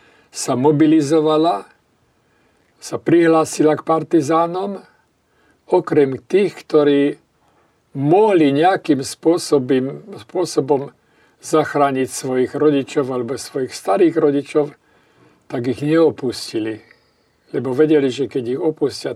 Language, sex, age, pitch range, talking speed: Slovak, male, 50-69, 125-155 Hz, 90 wpm